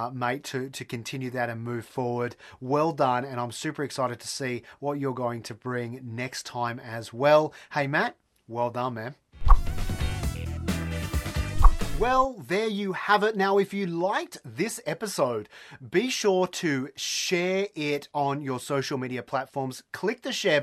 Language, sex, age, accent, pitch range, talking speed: English, male, 30-49, Australian, 125-165 Hz, 160 wpm